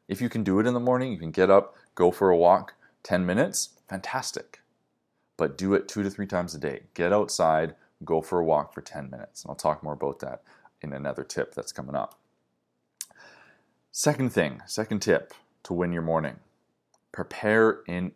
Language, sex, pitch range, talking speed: English, male, 85-110 Hz, 195 wpm